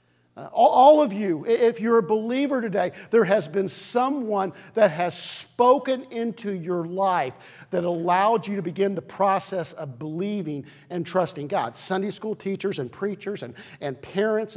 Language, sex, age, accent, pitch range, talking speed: English, male, 50-69, American, 180-230 Hz, 155 wpm